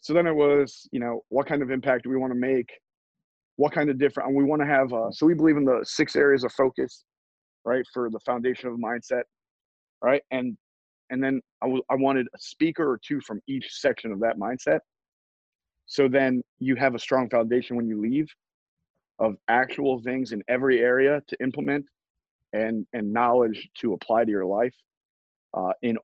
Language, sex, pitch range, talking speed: English, male, 120-145 Hz, 200 wpm